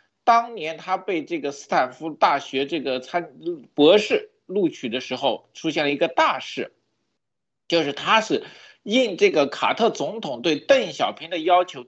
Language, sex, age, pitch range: Chinese, male, 50-69, 145-235 Hz